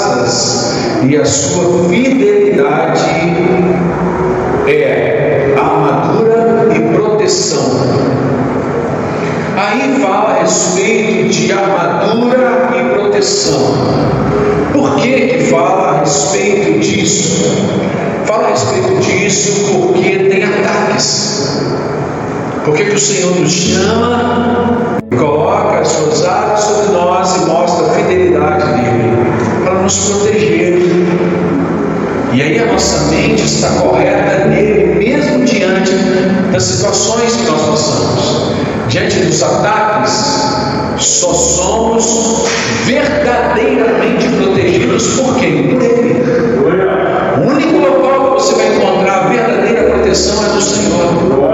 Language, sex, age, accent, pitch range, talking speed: Portuguese, male, 60-79, Brazilian, 185-230 Hz, 100 wpm